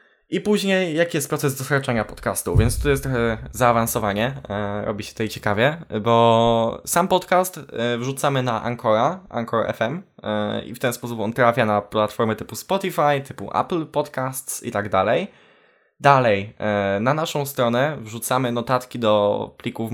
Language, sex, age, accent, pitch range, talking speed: Polish, male, 10-29, native, 110-140 Hz, 155 wpm